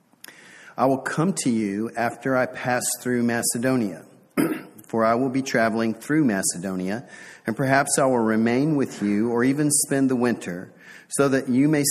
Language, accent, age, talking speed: English, American, 40-59, 165 wpm